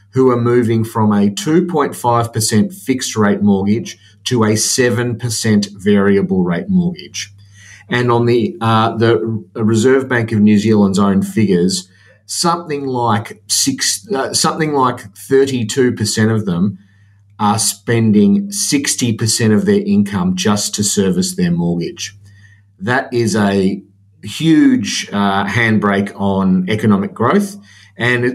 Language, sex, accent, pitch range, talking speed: English, male, Australian, 100-125 Hz, 120 wpm